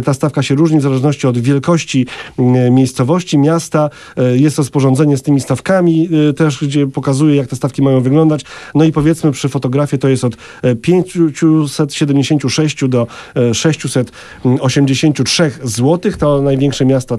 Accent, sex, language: native, male, Polish